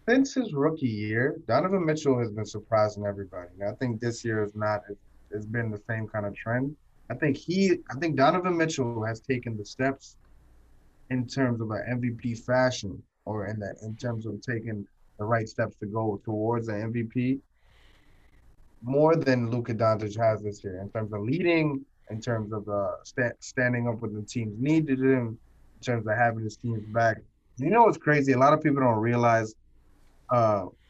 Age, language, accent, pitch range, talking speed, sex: 20-39, English, American, 105-140 Hz, 185 wpm, male